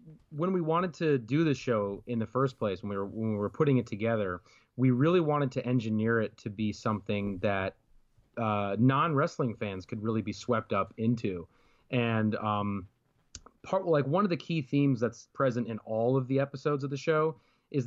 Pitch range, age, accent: 110-135 Hz, 30-49, American